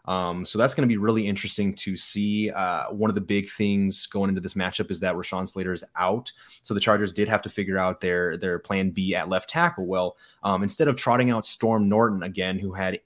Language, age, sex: English, 20-39, male